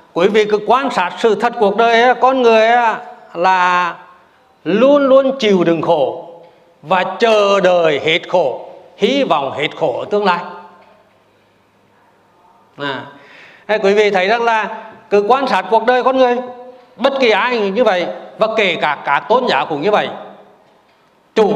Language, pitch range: Vietnamese, 175-225 Hz